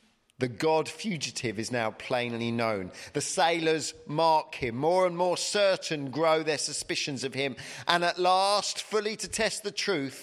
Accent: British